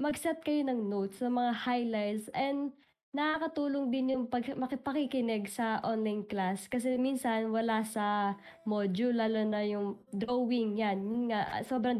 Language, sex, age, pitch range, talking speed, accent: Filipino, female, 20-39, 215-270 Hz, 145 wpm, native